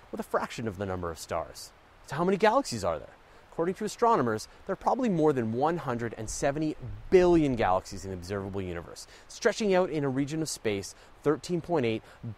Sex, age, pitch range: male, 30-49, 110-185 Hz